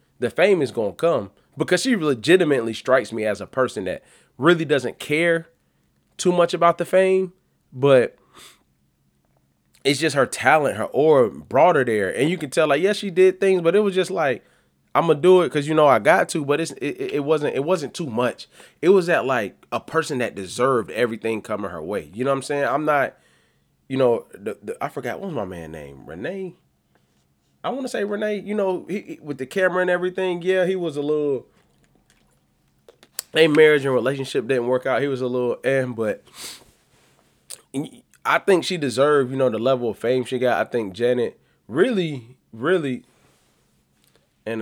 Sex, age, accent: male, 20-39, American